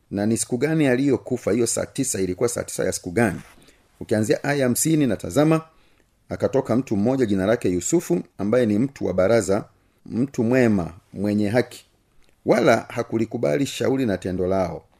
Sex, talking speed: male, 180 wpm